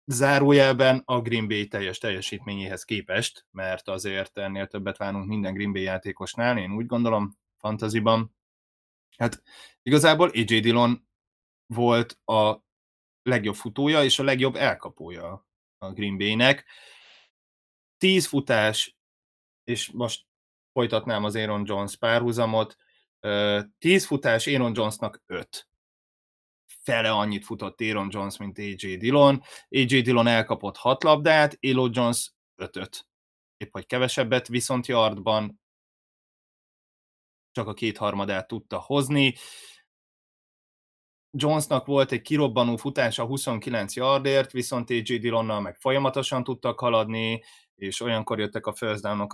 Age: 20-39